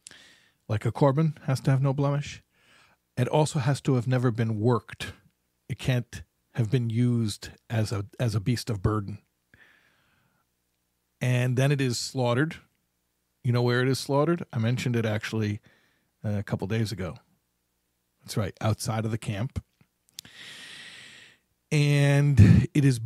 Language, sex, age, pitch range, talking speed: English, male, 40-59, 110-135 Hz, 145 wpm